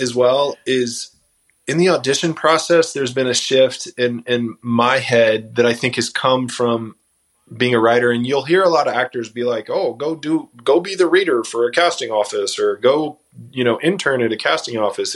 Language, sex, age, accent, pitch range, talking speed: English, male, 20-39, American, 120-155 Hz, 210 wpm